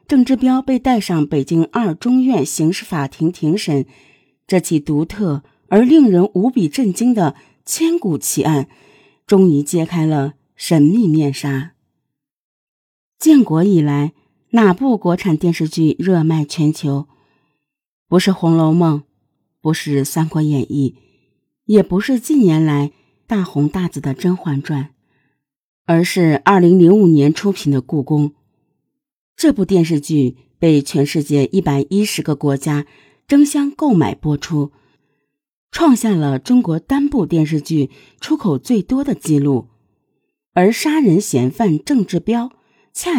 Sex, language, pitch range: female, Chinese, 140-195 Hz